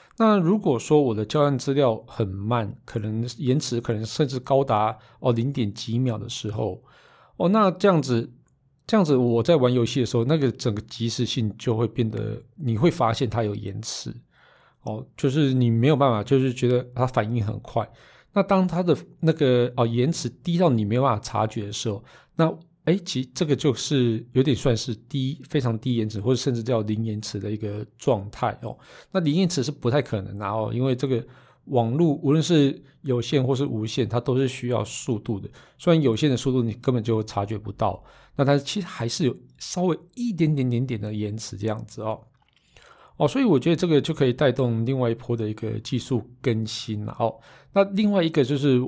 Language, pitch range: Chinese, 115-140 Hz